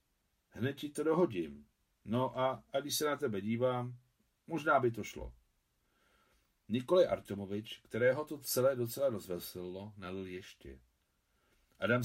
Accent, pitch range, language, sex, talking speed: native, 95-125 Hz, Czech, male, 130 wpm